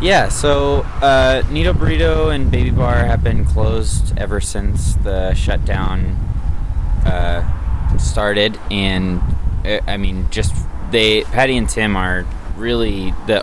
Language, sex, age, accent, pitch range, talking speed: English, male, 20-39, American, 80-100 Hz, 130 wpm